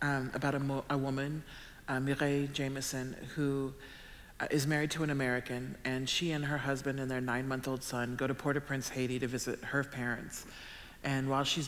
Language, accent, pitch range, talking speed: English, American, 120-140 Hz, 180 wpm